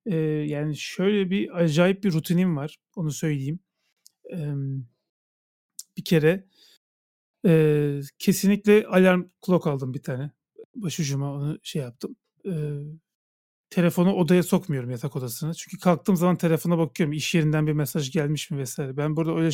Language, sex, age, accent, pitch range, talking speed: Turkish, male, 40-59, native, 150-190 Hz, 140 wpm